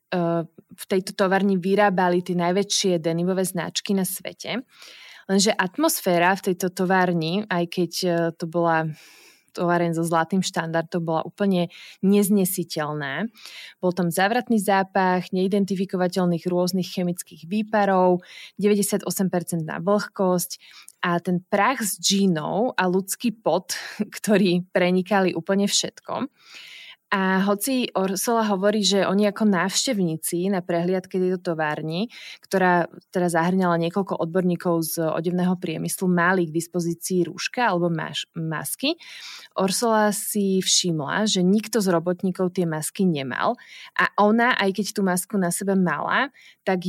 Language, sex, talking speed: Slovak, female, 120 wpm